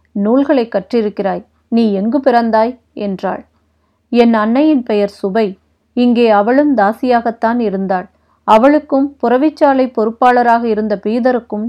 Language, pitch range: Tamil, 205-255 Hz